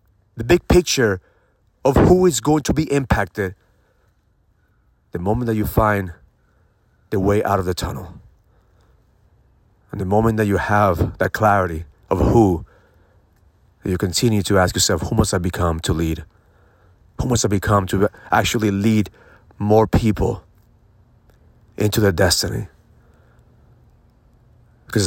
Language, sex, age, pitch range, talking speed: English, male, 40-59, 95-110 Hz, 130 wpm